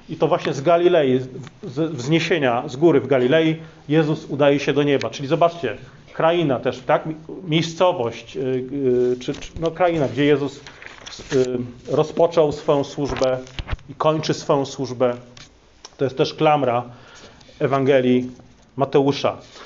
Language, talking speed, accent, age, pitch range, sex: Polish, 125 wpm, native, 40-59, 125-160 Hz, male